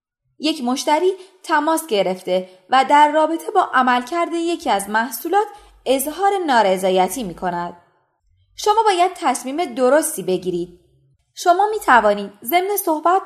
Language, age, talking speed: Persian, 20-39, 120 wpm